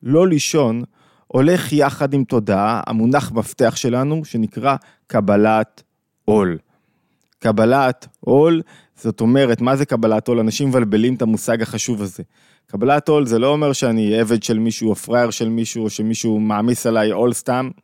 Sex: male